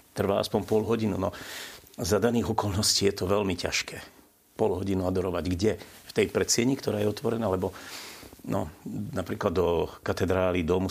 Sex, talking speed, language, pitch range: male, 155 wpm, Slovak, 90-105 Hz